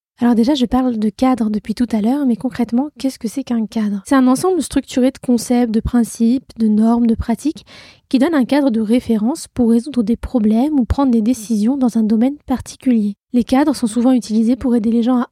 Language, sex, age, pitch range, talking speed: French, female, 20-39, 230-260 Hz, 225 wpm